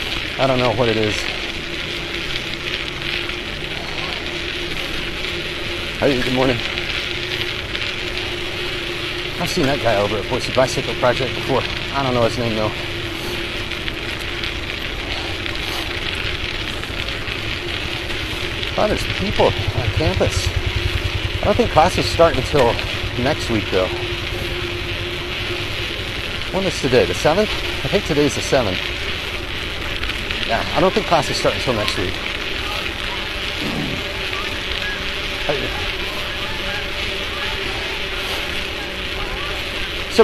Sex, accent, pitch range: male, American, 105-130 Hz